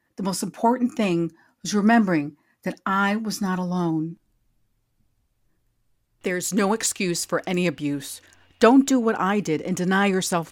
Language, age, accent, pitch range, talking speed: English, 50-69, American, 160-235 Hz, 145 wpm